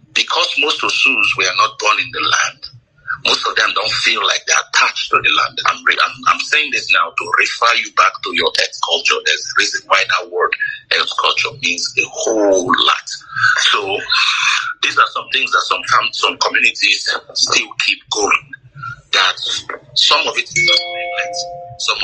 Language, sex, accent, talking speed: English, male, Nigerian, 185 wpm